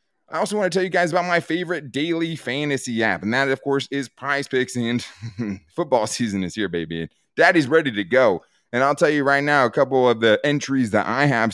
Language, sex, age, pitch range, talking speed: English, male, 20-39, 100-145 Hz, 235 wpm